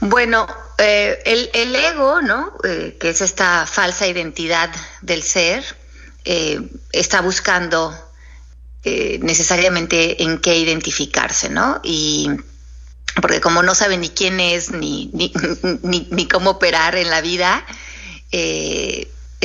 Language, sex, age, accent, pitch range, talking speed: Spanish, female, 30-49, Mexican, 140-195 Hz, 125 wpm